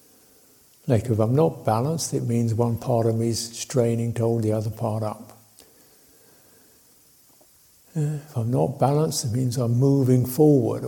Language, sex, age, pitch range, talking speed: English, male, 60-79, 110-130 Hz, 155 wpm